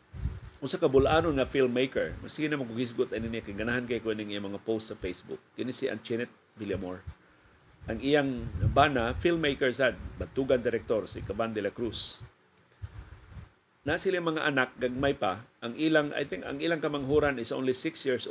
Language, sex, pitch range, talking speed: Filipino, male, 110-140 Hz, 155 wpm